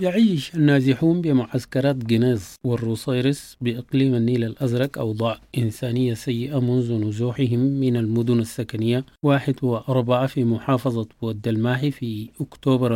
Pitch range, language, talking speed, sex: 115-130 Hz, English, 105 wpm, male